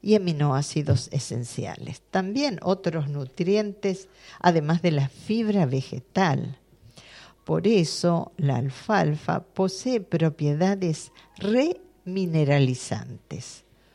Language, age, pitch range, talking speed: Spanish, 50-69, 140-195 Hz, 75 wpm